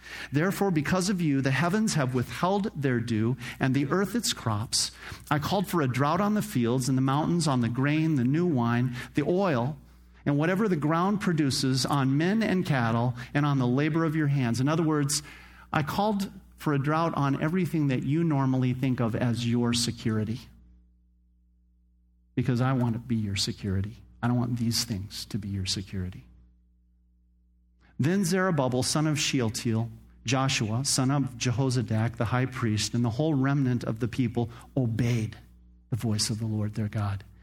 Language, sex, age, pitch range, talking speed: English, male, 50-69, 110-145 Hz, 180 wpm